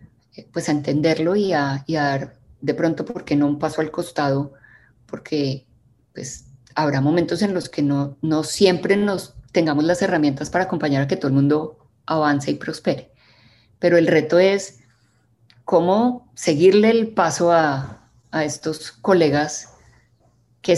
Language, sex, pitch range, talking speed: Spanish, female, 145-180 Hz, 155 wpm